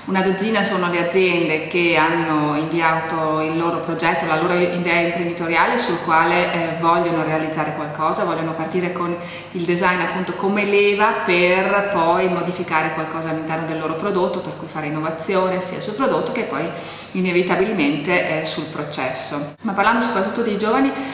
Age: 30-49